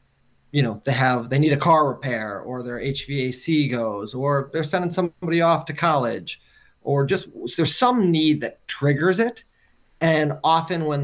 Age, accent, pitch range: 30-49, American, 120-150 Hz